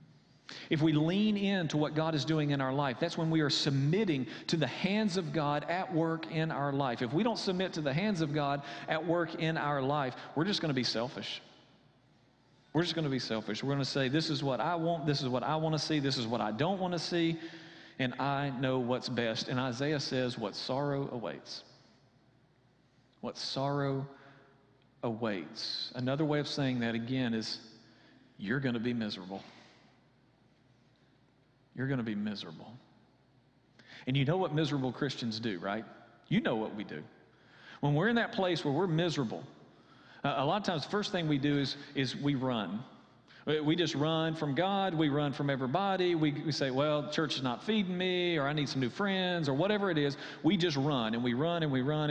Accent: American